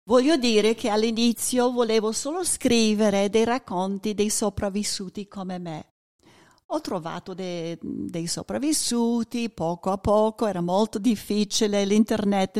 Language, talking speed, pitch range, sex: Italian, 120 wpm, 190-245 Hz, female